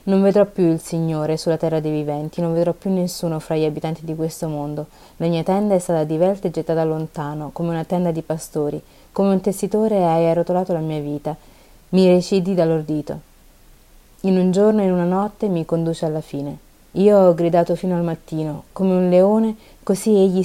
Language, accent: Italian, native